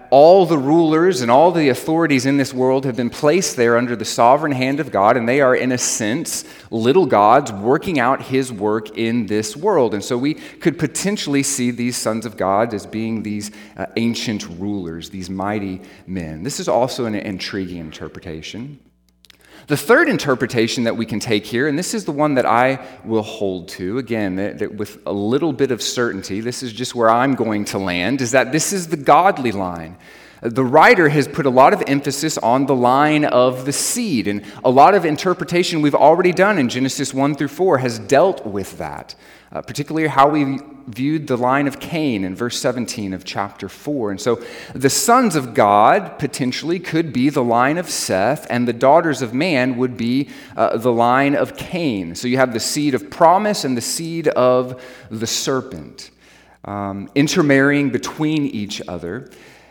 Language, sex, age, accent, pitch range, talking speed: English, male, 30-49, American, 105-145 Hz, 190 wpm